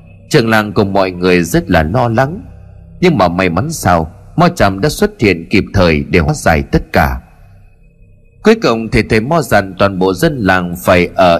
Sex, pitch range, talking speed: male, 90-150 Hz, 205 wpm